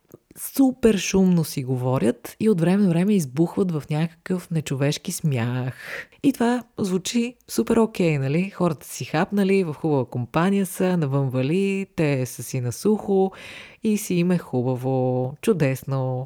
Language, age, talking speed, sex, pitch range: Bulgarian, 30-49, 150 wpm, female, 140-185 Hz